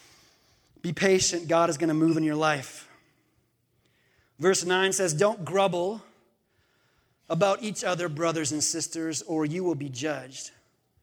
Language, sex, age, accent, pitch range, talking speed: English, male, 30-49, American, 150-230 Hz, 140 wpm